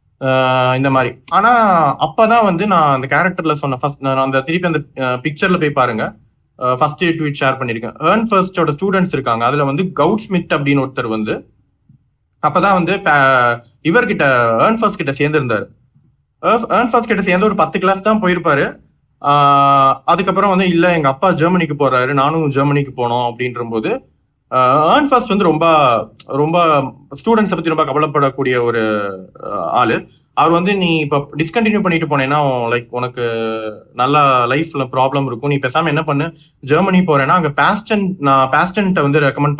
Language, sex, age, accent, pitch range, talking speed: Tamil, male, 30-49, native, 130-180 Hz, 110 wpm